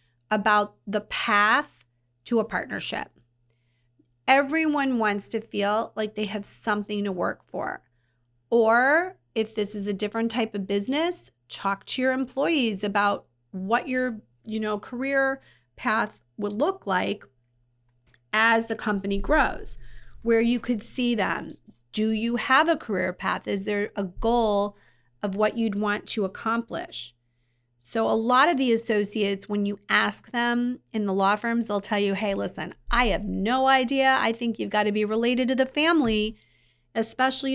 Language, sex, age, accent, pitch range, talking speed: English, female, 30-49, American, 195-230 Hz, 155 wpm